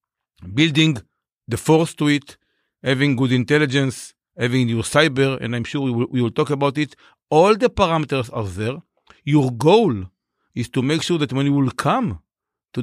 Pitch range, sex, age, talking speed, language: 120-150 Hz, male, 50-69, 180 wpm, English